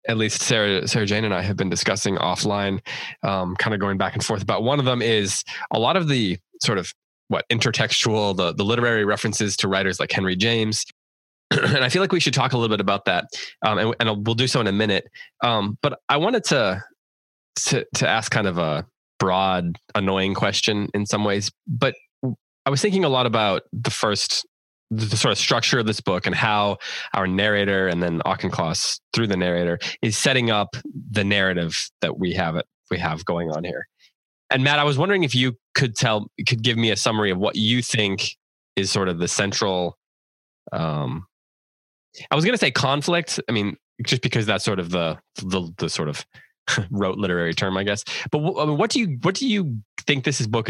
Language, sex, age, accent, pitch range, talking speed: English, male, 20-39, American, 95-125 Hz, 205 wpm